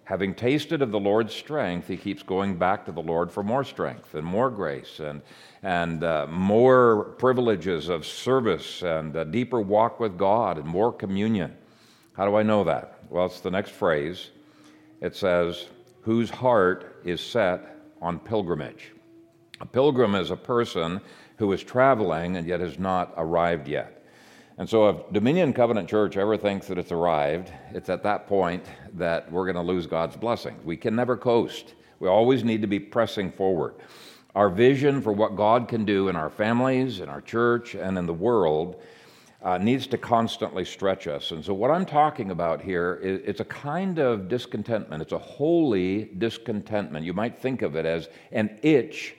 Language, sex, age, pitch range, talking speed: English, male, 50-69, 90-120 Hz, 180 wpm